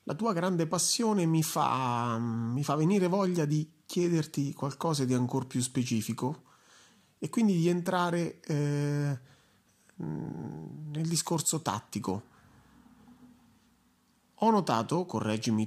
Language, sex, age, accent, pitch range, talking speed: Italian, male, 30-49, native, 120-170 Hz, 105 wpm